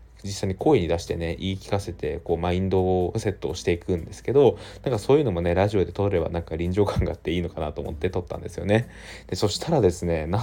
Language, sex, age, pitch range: Japanese, male, 20-39, 90-105 Hz